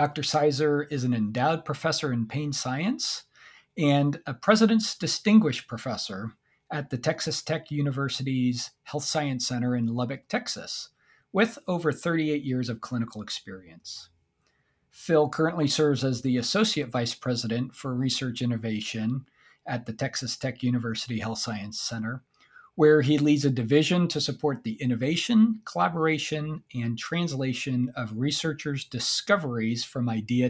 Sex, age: male, 40-59